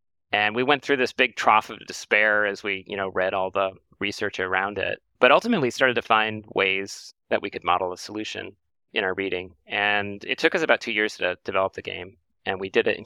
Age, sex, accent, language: 30-49, male, American, English